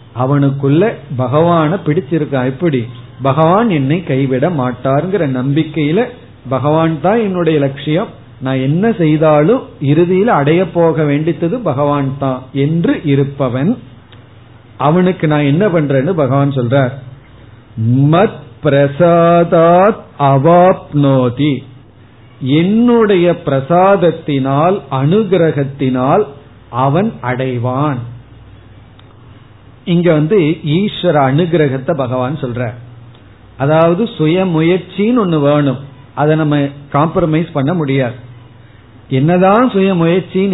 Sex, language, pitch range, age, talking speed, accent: male, Tamil, 130-165 Hz, 50-69, 65 wpm, native